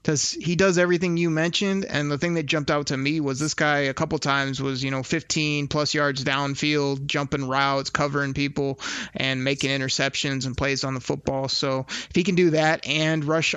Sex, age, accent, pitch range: male, 30-49, American, 135-155 Hz